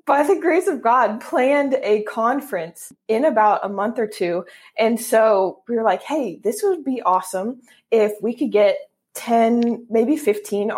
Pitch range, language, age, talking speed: 200-235 Hz, English, 20-39, 175 wpm